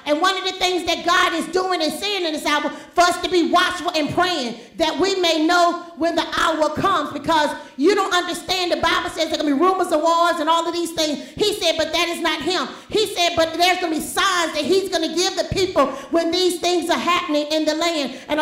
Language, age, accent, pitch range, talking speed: English, 40-59, American, 315-360 Hz, 255 wpm